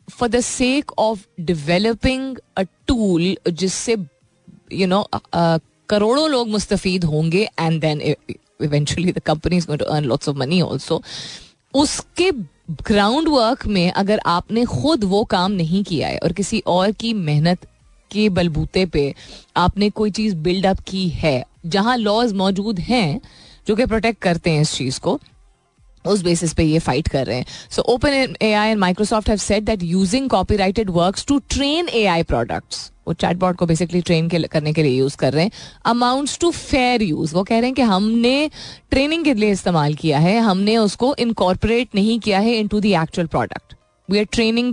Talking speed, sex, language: 160 wpm, female, Hindi